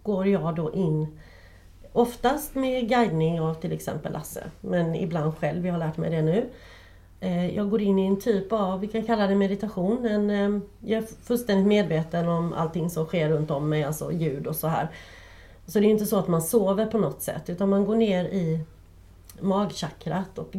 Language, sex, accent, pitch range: Swedish, female, native, 160-205 Hz